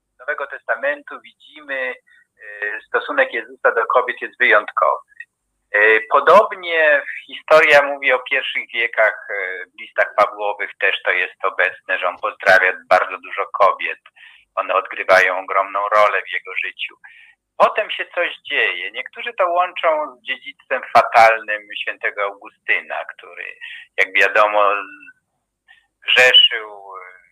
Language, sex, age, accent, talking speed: Polish, male, 50-69, native, 110 wpm